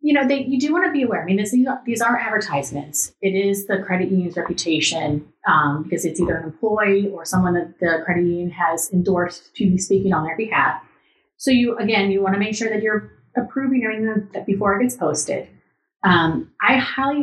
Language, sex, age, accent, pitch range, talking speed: English, female, 30-49, American, 165-210 Hz, 210 wpm